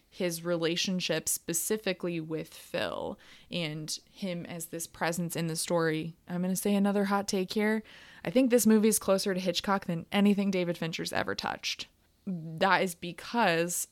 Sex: female